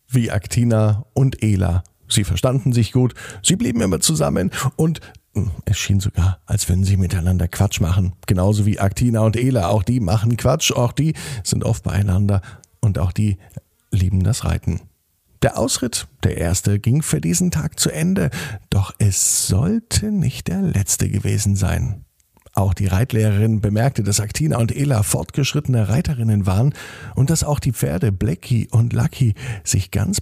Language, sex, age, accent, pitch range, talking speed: German, male, 50-69, German, 100-130 Hz, 160 wpm